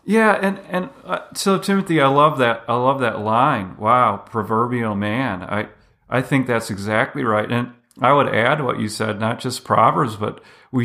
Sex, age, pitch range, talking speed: male, 40-59, 115-135 Hz, 190 wpm